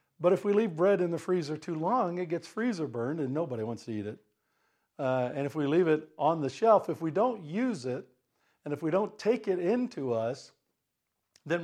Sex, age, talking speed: male, 60-79, 220 wpm